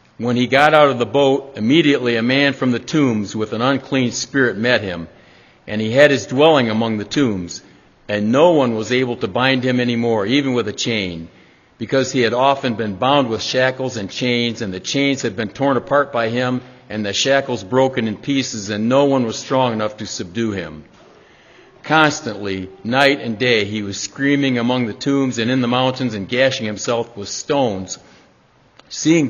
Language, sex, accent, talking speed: English, male, American, 195 wpm